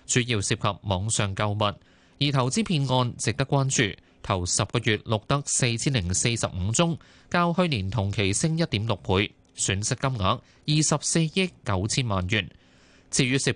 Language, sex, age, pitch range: Chinese, male, 20-39, 100-140 Hz